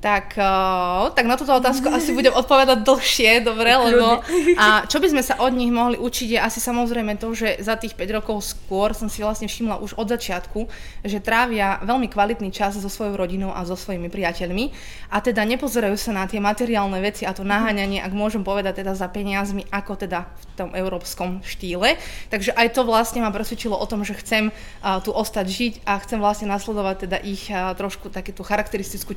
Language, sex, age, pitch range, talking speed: Slovak, female, 20-39, 195-230 Hz, 195 wpm